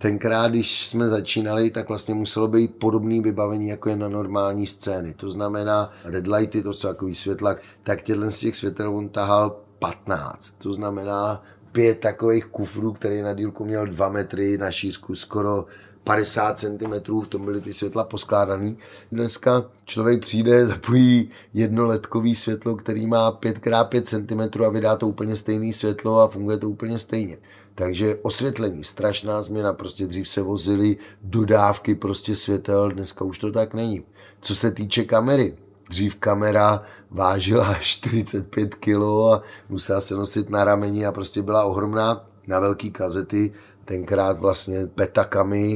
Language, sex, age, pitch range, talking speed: Czech, male, 30-49, 100-110 Hz, 145 wpm